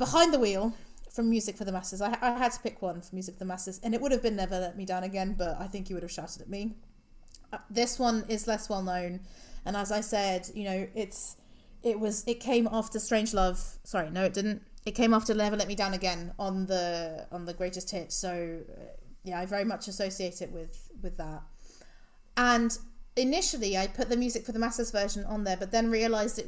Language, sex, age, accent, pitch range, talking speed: English, female, 30-49, British, 190-235 Hz, 235 wpm